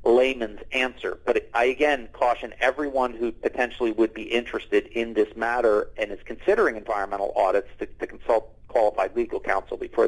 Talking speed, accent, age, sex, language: 160 wpm, American, 40-59, male, English